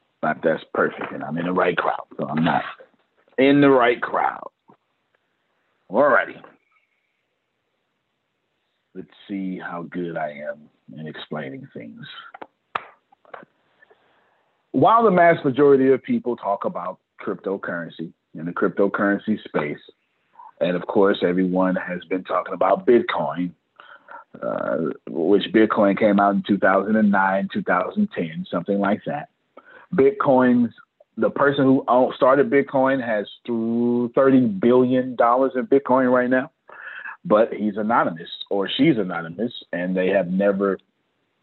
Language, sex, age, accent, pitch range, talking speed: English, male, 40-59, American, 100-140 Hz, 120 wpm